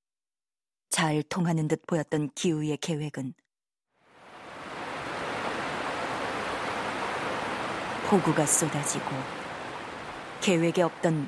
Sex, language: female, Korean